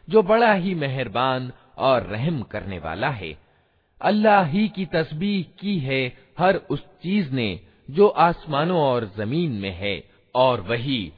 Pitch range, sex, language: 105-160 Hz, male, Hindi